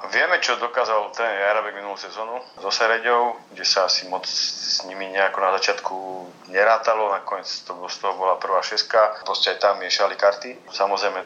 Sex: male